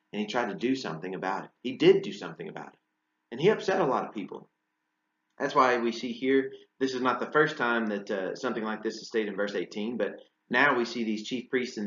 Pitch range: 95-130 Hz